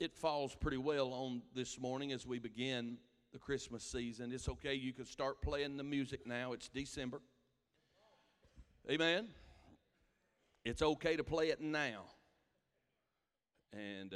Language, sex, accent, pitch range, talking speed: English, male, American, 120-155 Hz, 135 wpm